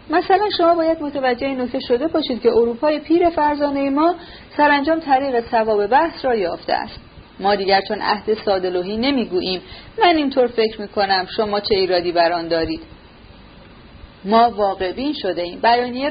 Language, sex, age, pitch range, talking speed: Persian, female, 40-59, 190-270 Hz, 145 wpm